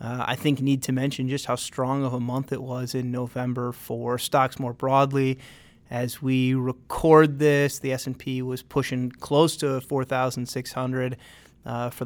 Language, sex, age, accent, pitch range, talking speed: English, male, 30-49, American, 130-150 Hz, 165 wpm